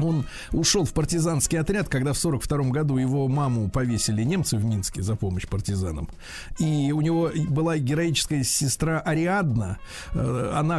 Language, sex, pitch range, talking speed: Russian, male, 125-155 Hz, 145 wpm